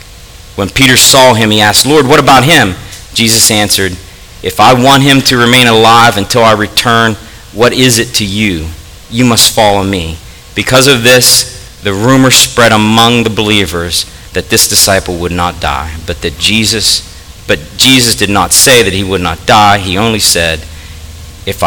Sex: male